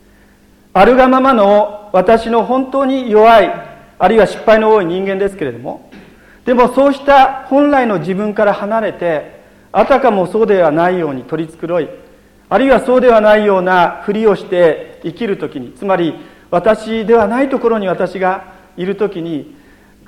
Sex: male